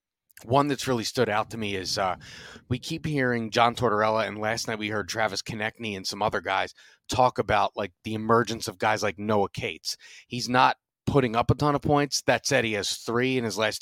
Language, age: English, 30-49